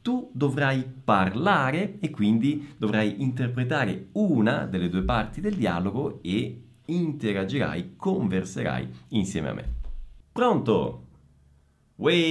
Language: Italian